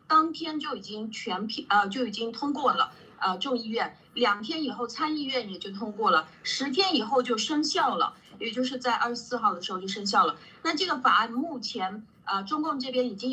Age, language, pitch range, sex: 30-49, Chinese, 230-285 Hz, female